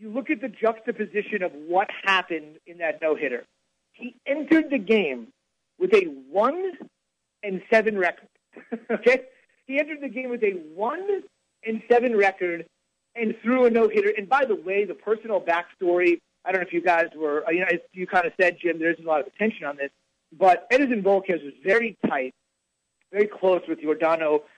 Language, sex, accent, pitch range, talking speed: English, male, American, 170-230 Hz, 190 wpm